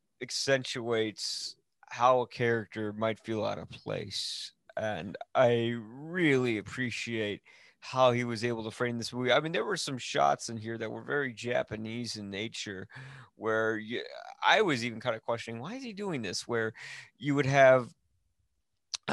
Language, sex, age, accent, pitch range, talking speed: English, male, 30-49, American, 115-160 Hz, 165 wpm